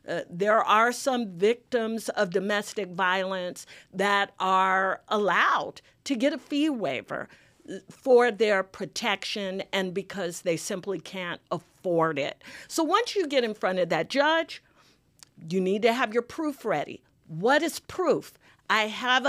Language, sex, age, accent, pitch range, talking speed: English, female, 50-69, American, 200-285 Hz, 145 wpm